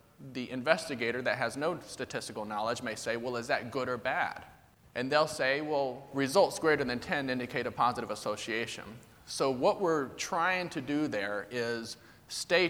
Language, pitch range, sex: English, 120-150 Hz, male